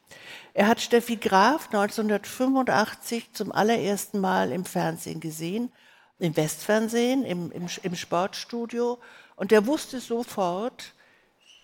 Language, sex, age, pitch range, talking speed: German, female, 60-79, 190-230 Hz, 110 wpm